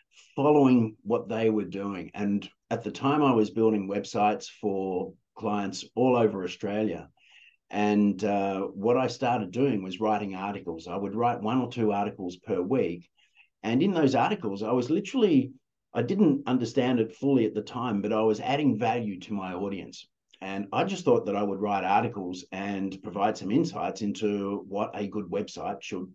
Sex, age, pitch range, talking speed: male, 50-69, 100-115 Hz, 180 wpm